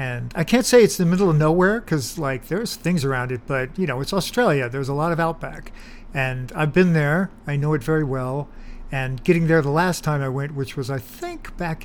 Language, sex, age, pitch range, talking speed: English, male, 50-69, 135-180 Hz, 240 wpm